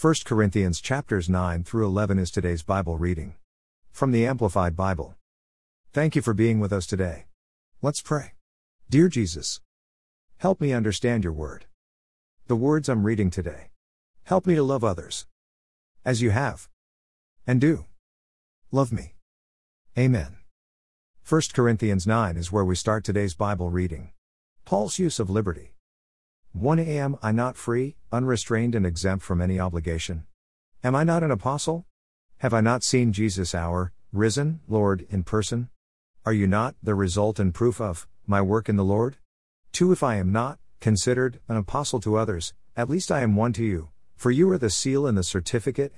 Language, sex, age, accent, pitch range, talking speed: English, male, 50-69, American, 85-120 Hz, 165 wpm